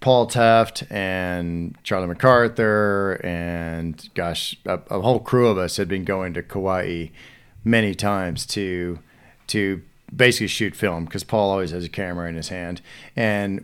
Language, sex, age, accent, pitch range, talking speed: English, male, 40-59, American, 90-110 Hz, 155 wpm